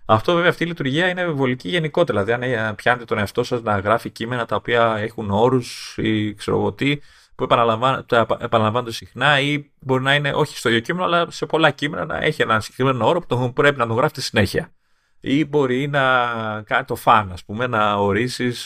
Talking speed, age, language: 195 wpm, 30-49, Greek